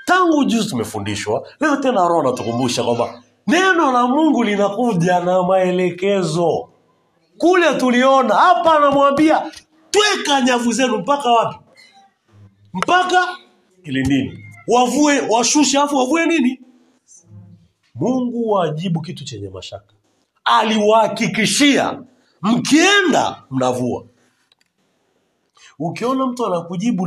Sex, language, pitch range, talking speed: male, Swahili, 175-280 Hz, 90 wpm